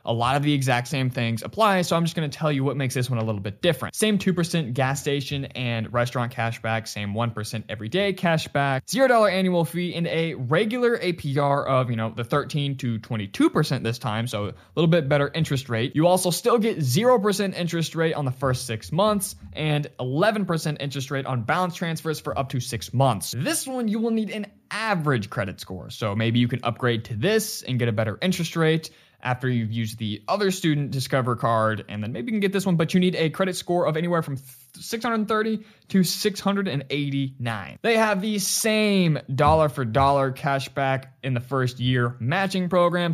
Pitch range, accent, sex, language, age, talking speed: 125-185 Hz, American, male, English, 20-39, 200 wpm